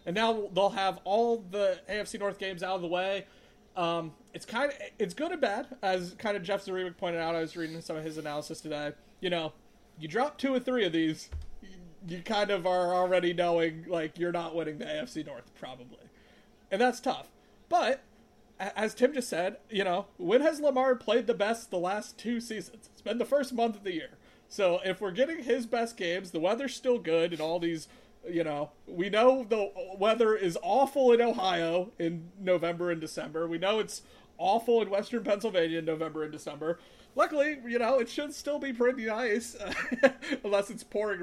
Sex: male